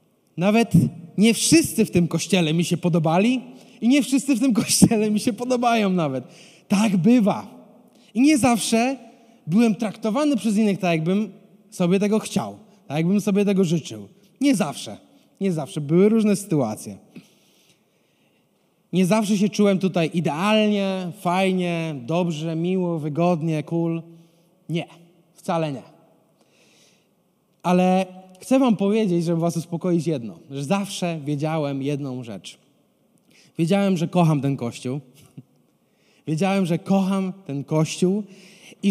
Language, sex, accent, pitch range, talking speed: Polish, male, native, 170-225 Hz, 130 wpm